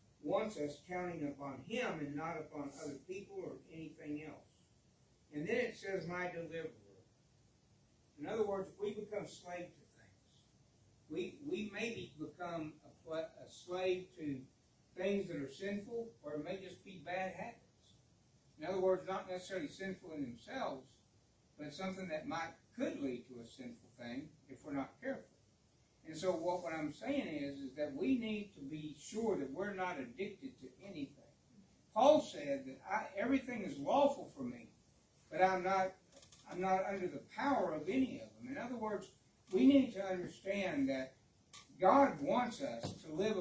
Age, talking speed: 60-79, 165 wpm